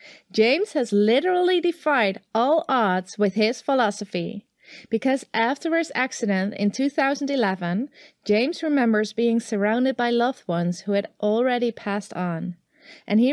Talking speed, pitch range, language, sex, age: 130 wpm, 205-275 Hz, English, female, 30-49